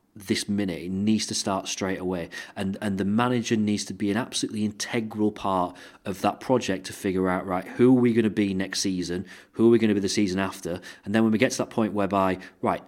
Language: English